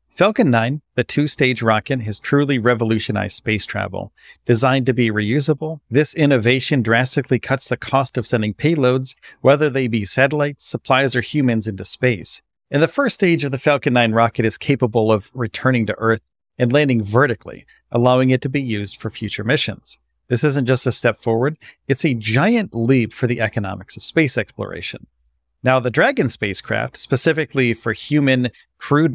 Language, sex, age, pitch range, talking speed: English, male, 40-59, 115-140 Hz, 170 wpm